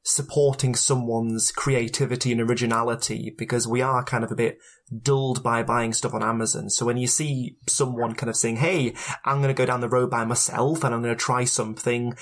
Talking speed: 205 wpm